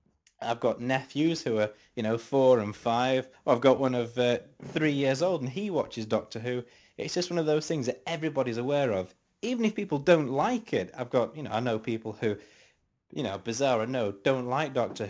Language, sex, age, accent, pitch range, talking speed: English, male, 20-39, British, 105-135 Hz, 220 wpm